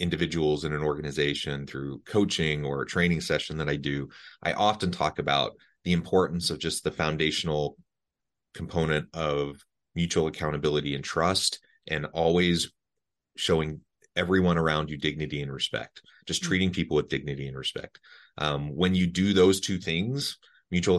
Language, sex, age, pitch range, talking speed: English, male, 30-49, 75-85 Hz, 150 wpm